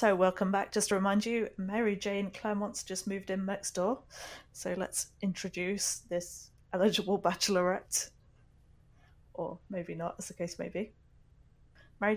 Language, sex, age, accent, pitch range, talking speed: English, female, 20-39, British, 170-200 Hz, 150 wpm